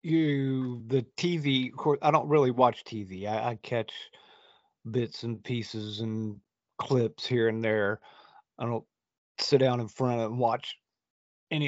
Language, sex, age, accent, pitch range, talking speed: English, male, 40-59, American, 115-145 Hz, 160 wpm